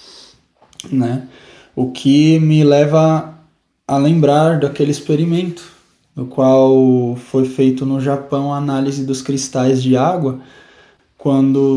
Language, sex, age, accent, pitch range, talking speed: Portuguese, male, 10-29, Brazilian, 130-150 Hz, 110 wpm